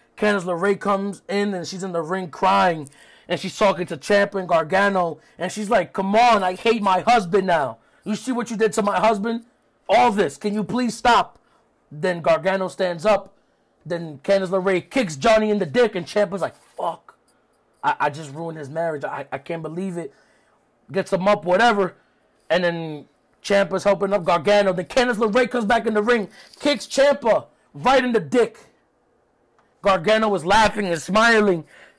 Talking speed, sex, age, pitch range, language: 180 wpm, male, 30-49, 175-220 Hz, English